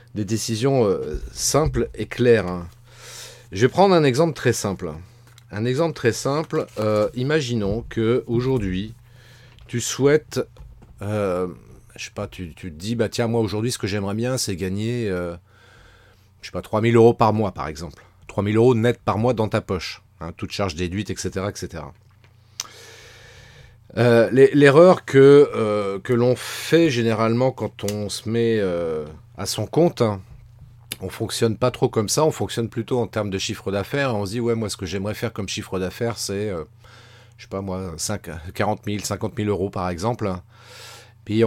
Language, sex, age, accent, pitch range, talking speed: French, male, 40-59, French, 100-120 Hz, 180 wpm